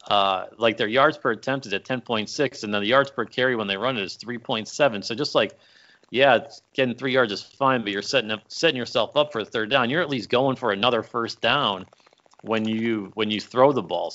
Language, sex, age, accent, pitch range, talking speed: English, male, 40-59, American, 105-130 Hz, 240 wpm